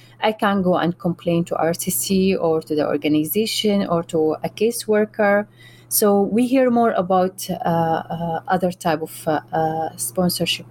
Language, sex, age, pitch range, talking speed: English, female, 30-49, 170-210 Hz, 155 wpm